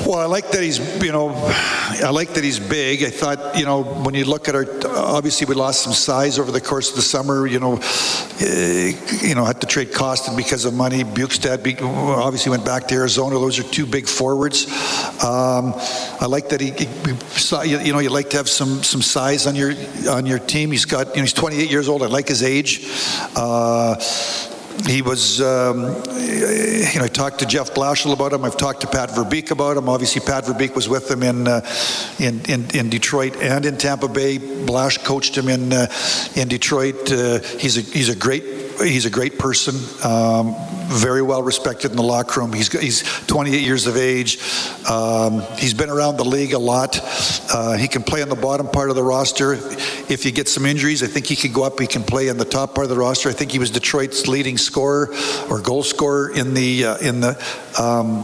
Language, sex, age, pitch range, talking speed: English, male, 60-79, 125-145 Hz, 215 wpm